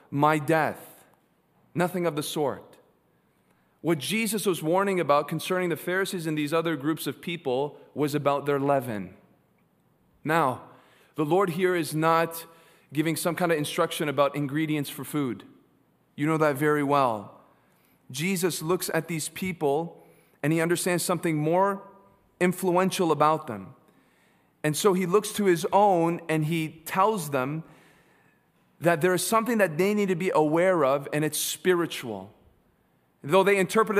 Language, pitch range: English, 140-175 Hz